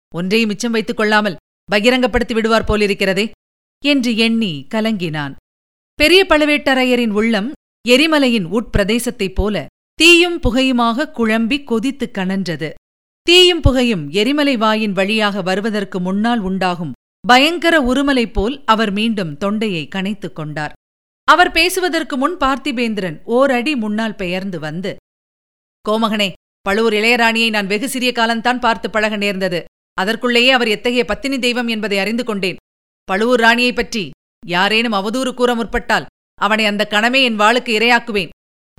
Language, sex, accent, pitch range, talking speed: Tamil, female, native, 205-255 Hz, 115 wpm